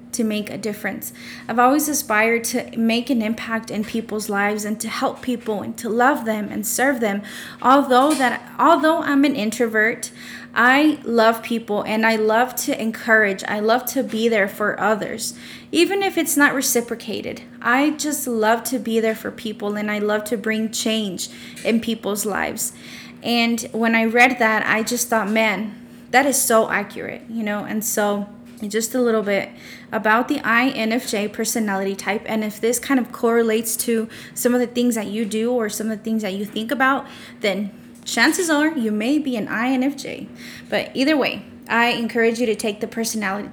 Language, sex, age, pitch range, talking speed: English, female, 20-39, 220-250 Hz, 185 wpm